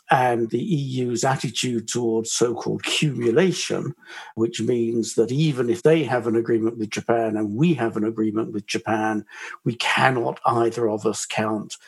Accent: British